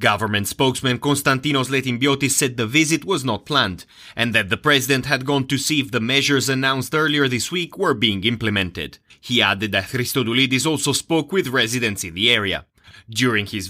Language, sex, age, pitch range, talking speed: English, male, 30-49, 115-145 Hz, 180 wpm